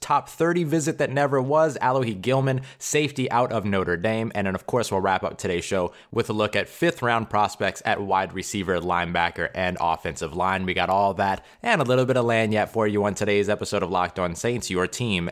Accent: American